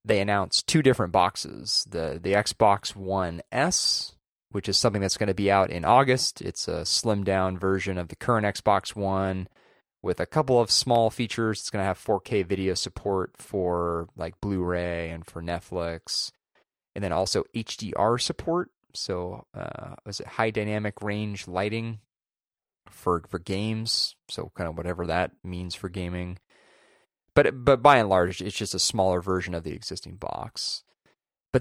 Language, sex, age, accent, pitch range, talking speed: English, male, 30-49, American, 90-110 Hz, 165 wpm